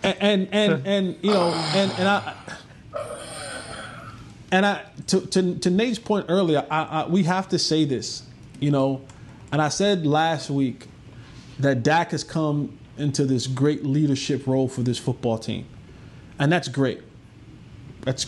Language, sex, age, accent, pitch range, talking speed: English, male, 20-39, American, 125-155 Hz, 160 wpm